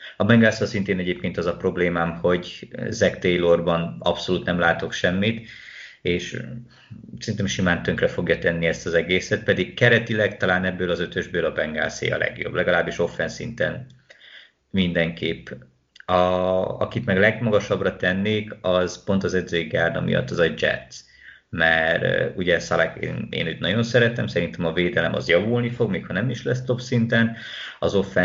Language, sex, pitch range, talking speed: Hungarian, male, 85-110 Hz, 150 wpm